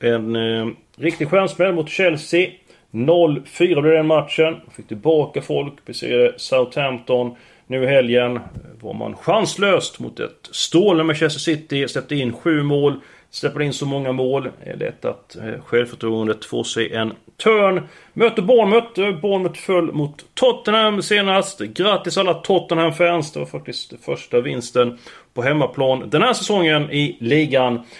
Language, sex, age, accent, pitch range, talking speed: Swedish, male, 30-49, native, 125-180 Hz, 145 wpm